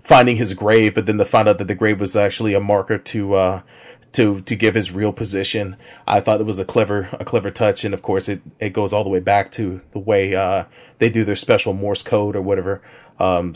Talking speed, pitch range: 245 wpm, 100-115 Hz